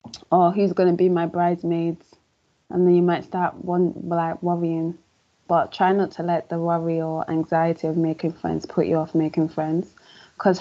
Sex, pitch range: female, 160-185 Hz